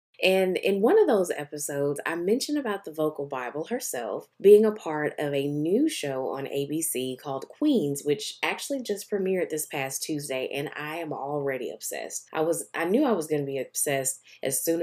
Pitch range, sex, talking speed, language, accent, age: 140-205 Hz, female, 195 wpm, English, American, 20-39